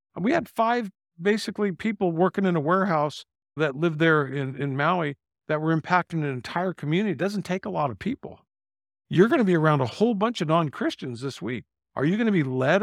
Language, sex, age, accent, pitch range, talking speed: English, male, 50-69, American, 150-215 Hz, 215 wpm